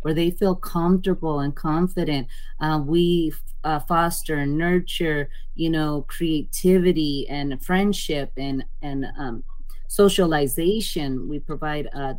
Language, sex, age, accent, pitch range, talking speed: English, female, 30-49, American, 145-170 Hz, 120 wpm